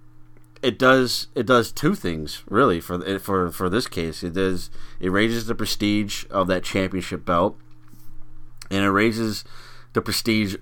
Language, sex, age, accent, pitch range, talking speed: English, male, 30-49, American, 80-105 Hz, 155 wpm